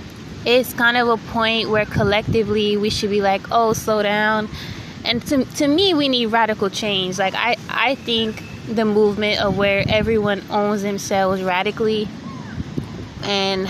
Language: English